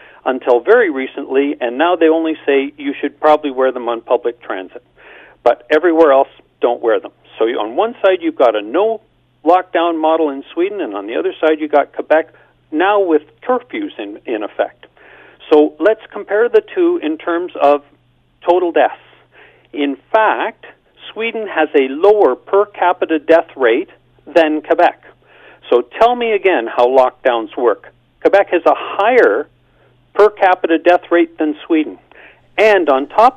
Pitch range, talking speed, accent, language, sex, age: 150-235 Hz, 160 wpm, American, English, male, 50-69